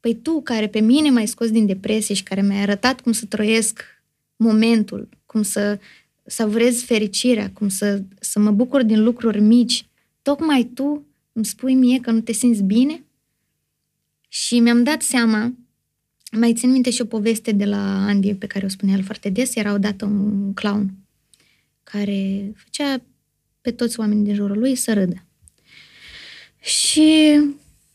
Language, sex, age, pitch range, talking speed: Romanian, female, 20-39, 200-245 Hz, 160 wpm